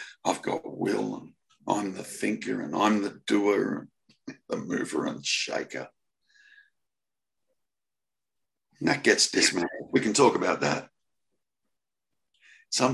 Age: 60-79